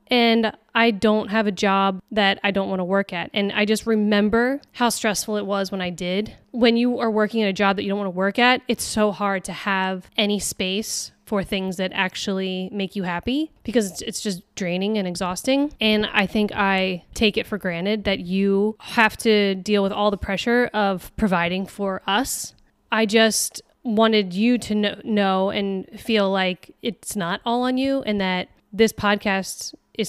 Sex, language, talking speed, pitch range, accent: female, English, 195 wpm, 190-220 Hz, American